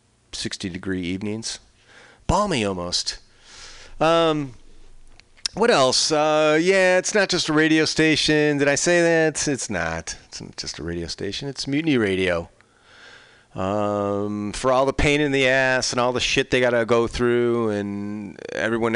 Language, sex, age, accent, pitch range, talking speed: English, male, 40-59, American, 100-130 Hz, 155 wpm